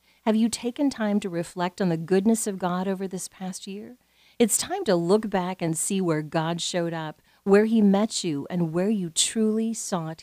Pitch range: 170-230 Hz